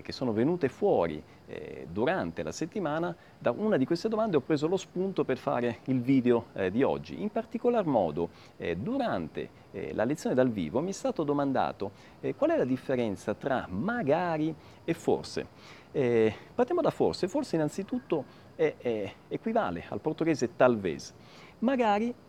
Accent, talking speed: native, 155 wpm